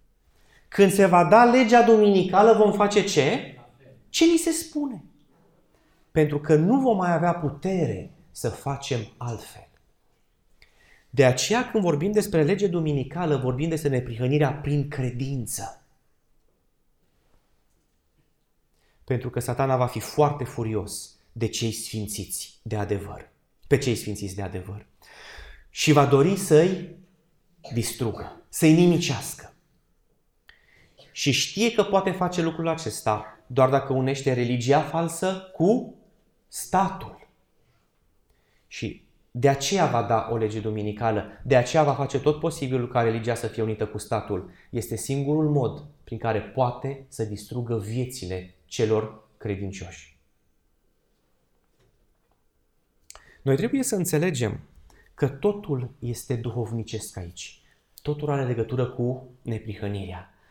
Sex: male